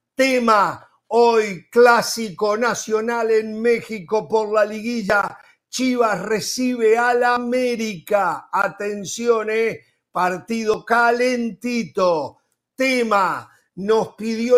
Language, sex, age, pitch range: Spanish, male, 50-69, 200-235 Hz